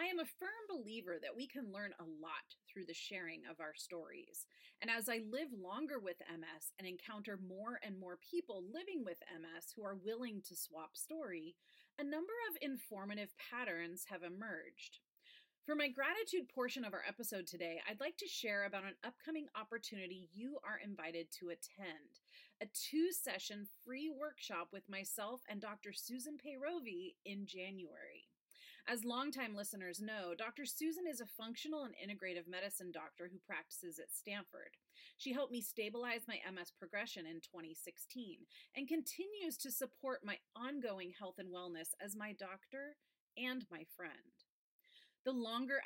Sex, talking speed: female, 160 wpm